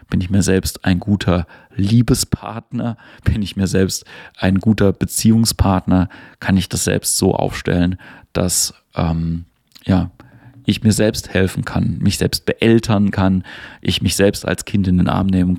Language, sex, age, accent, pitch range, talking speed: German, male, 40-59, German, 95-110 Hz, 160 wpm